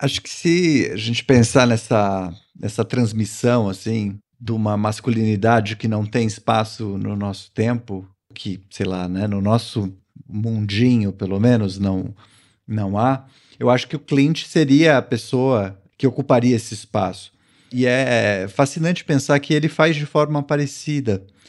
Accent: Brazilian